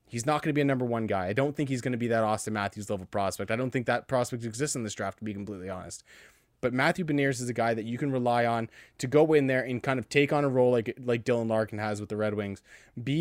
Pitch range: 120-150 Hz